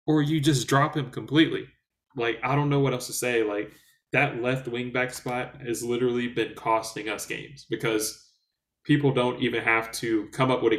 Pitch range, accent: 110-130 Hz, American